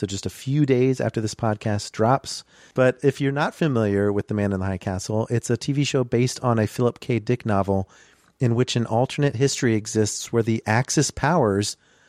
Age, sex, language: 40-59, male, English